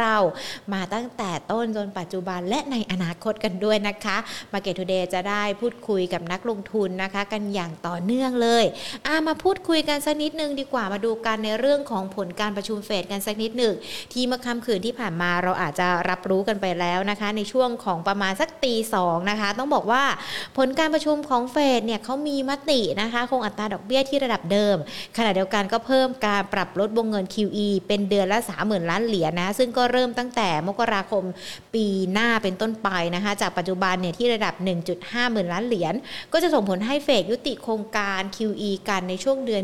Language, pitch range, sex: Thai, 190-240 Hz, female